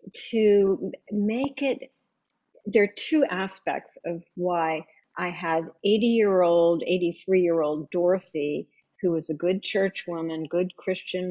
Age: 50-69